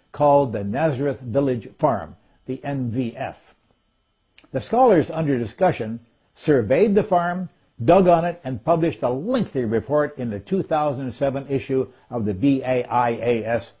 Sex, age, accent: male, 60-79, American